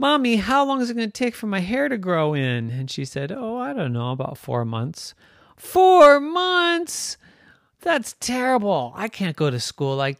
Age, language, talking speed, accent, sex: 40-59, English, 200 wpm, American, male